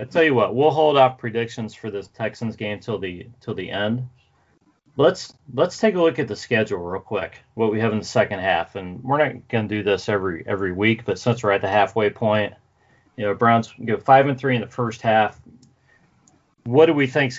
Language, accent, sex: English, American, male